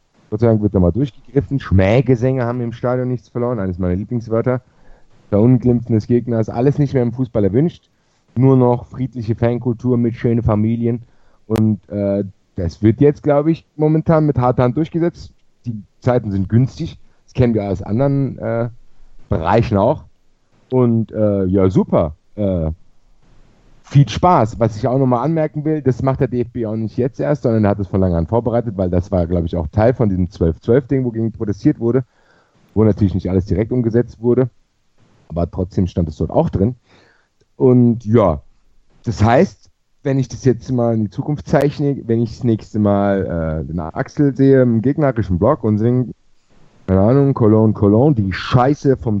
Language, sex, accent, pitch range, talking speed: German, male, German, 100-130 Hz, 175 wpm